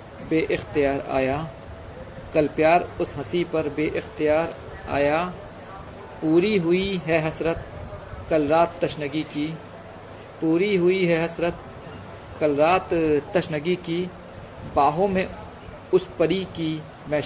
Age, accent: 50-69, native